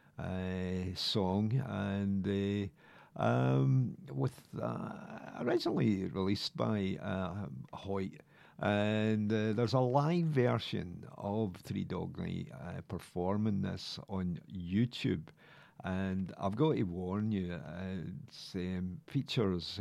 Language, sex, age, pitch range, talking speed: English, male, 50-69, 90-110 Hz, 110 wpm